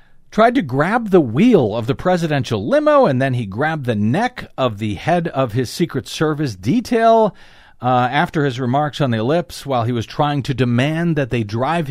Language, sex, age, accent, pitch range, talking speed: English, male, 50-69, American, 120-175 Hz, 195 wpm